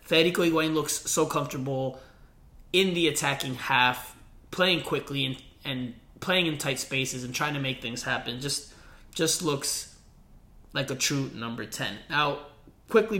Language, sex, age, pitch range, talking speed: English, male, 20-39, 130-160 Hz, 150 wpm